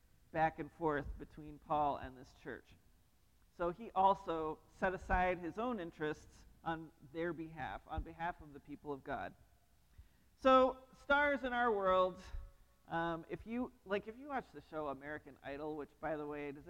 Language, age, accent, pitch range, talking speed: English, 40-59, American, 155-250 Hz, 170 wpm